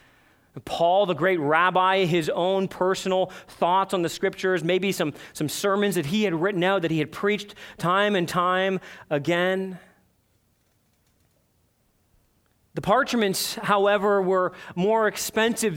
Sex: male